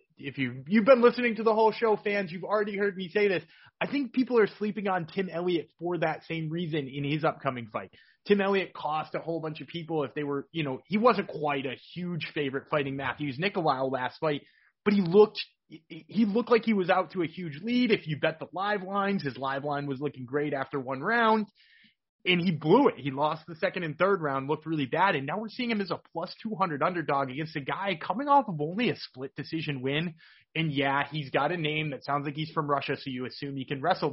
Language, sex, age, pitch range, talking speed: English, male, 30-49, 145-195 Hz, 240 wpm